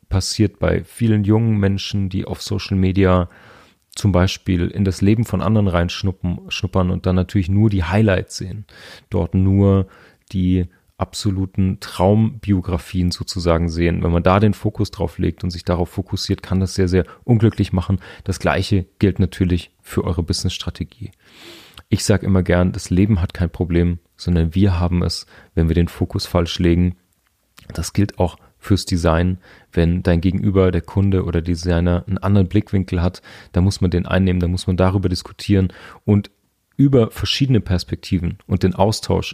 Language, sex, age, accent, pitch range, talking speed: English, male, 30-49, German, 90-100 Hz, 165 wpm